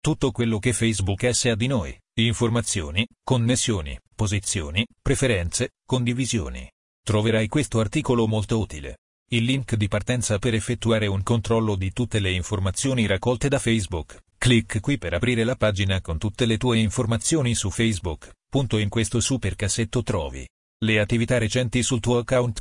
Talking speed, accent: 155 wpm, native